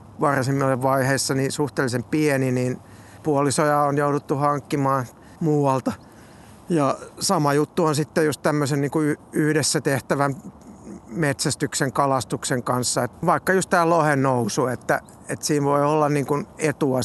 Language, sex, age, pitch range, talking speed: Finnish, male, 60-79, 130-155 Hz, 120 wpm